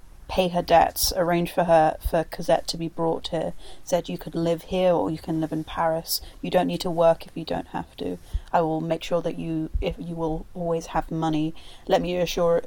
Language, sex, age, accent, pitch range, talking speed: English, female, 30-49, British, 160-180 Hz, 225 wpm